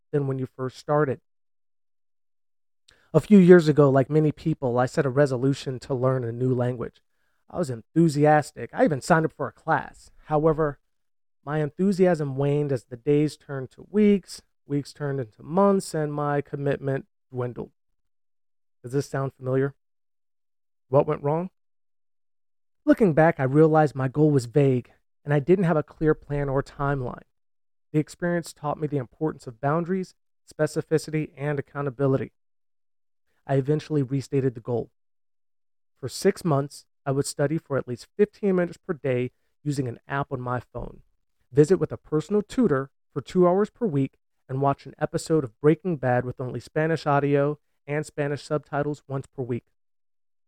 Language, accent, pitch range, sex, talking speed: English, American, 135-155 Hz, male, 160 wpm